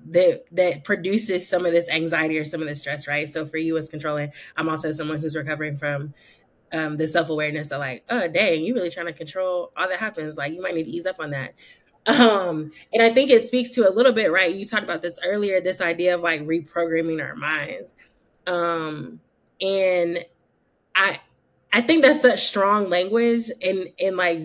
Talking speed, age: 200 wpm, 20-39